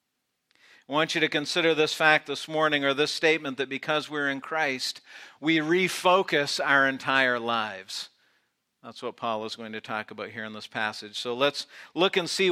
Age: 50-69